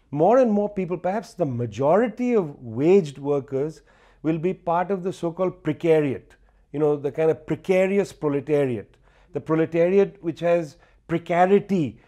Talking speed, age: 145 wpm, 40-59